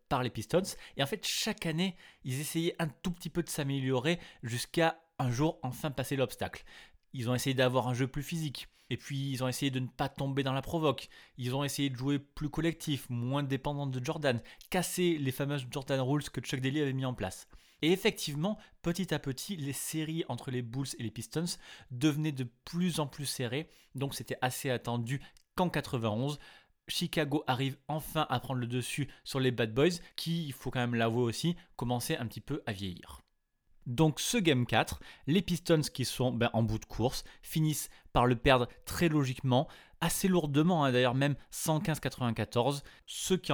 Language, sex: French, male